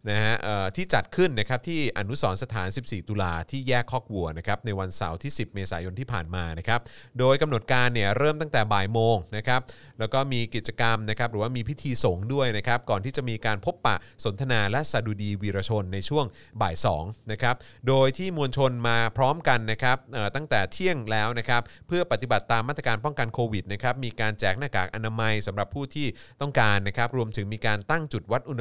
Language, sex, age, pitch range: Thai, male, 20-39, 105-125 Hz